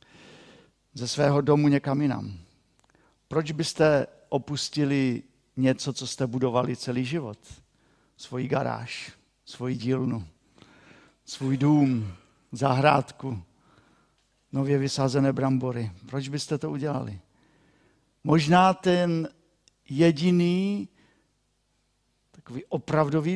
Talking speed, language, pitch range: 85 wpm, Czech, 125-160 Hz